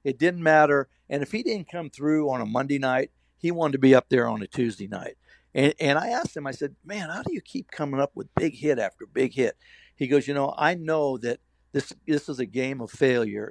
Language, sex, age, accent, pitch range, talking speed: English, male, 60-79, American, 120-145 Hz, 255 wpm